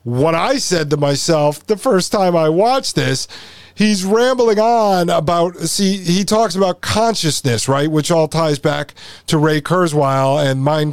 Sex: male